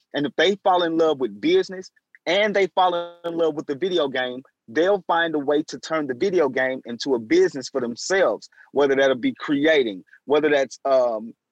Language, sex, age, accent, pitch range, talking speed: English, male, 30-49, American, 150-200 Hz, 200 wpm